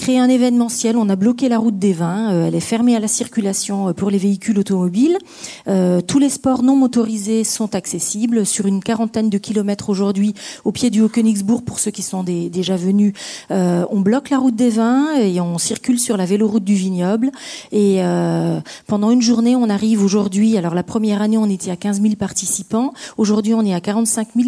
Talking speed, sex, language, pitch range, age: 200 wpm, female, French, 200-235 Hz, 40-59